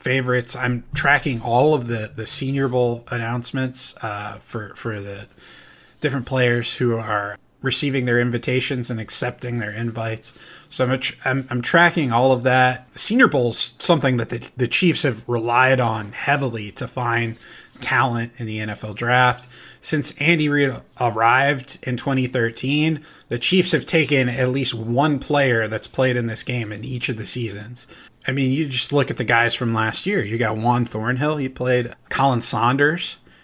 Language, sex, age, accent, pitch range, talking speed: English, male, 20-39, American, 115-135 Hz, 170 wpm